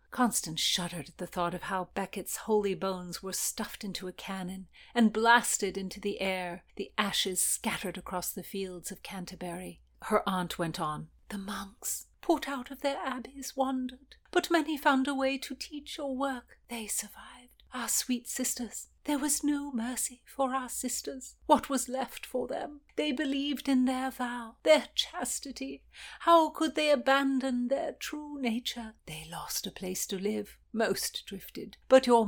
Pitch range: 200-270 Hz